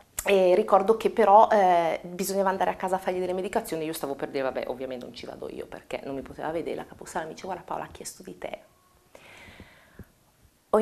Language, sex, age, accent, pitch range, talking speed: Italian, female, 30-49, native, 185-215 Hz, 215 wpm